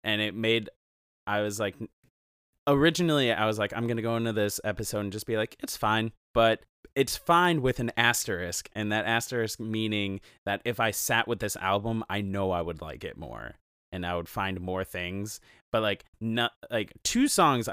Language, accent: English, American